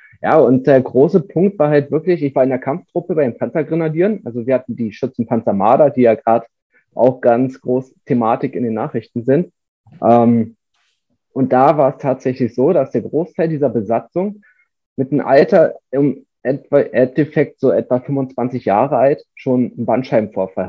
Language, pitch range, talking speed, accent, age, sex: German, 125-150 Hz, 165 wpm, German, 20-39, male